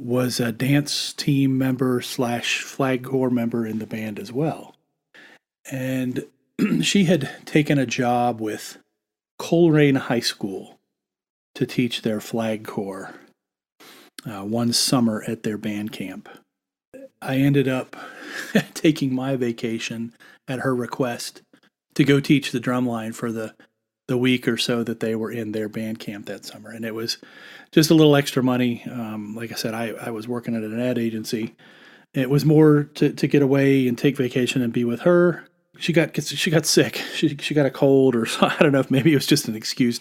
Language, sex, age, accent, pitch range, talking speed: English, male, 40-59, American, 115-140 Hz, 180 wpm